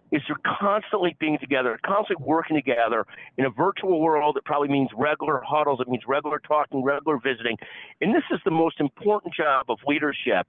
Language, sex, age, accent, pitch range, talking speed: English, male, 50-69, American, 135-170 Hz, 185 wpm